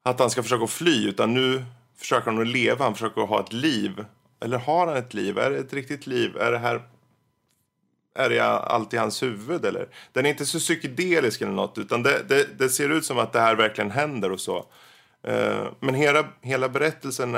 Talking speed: 205 wpm